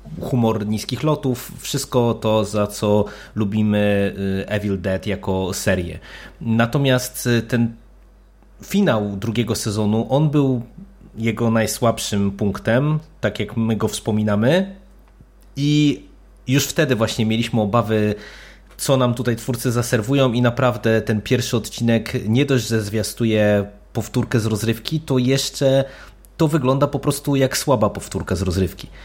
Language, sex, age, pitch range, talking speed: Polish, male, 20-39, 105-130 Hz, 125 wpm